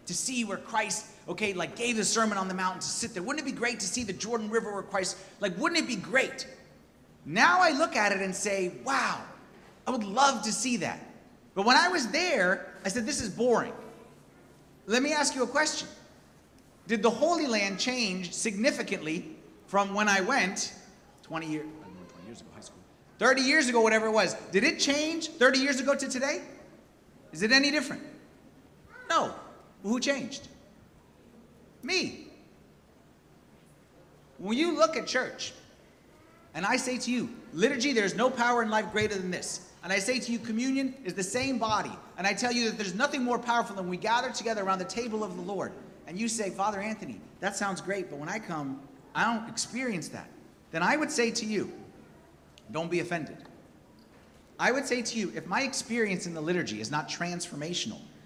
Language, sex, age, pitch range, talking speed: English, male, 30-49, 195-255 Hz, 195 wpm